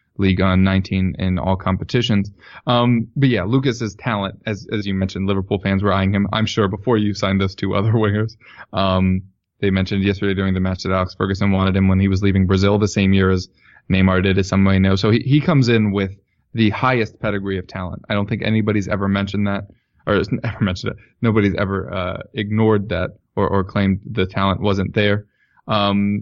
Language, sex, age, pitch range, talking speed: English, male, 20-39, 95-110 Hz, 205 wpm